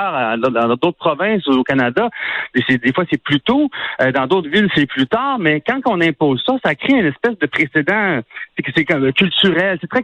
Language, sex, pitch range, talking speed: French, male, 140-200 Hz, 220 wpm